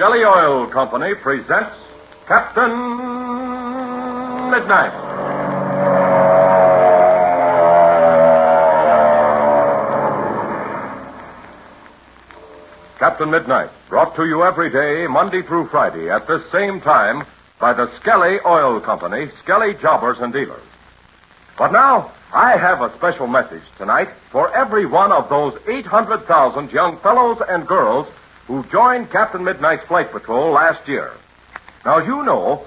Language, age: English, 60-79